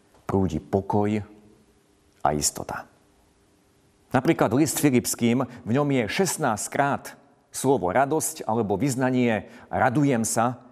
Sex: male